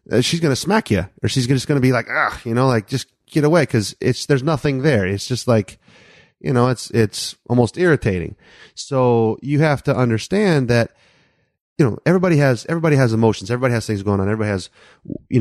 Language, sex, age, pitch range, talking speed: English, male, 30-49, 100-125 Hz, 210 wpm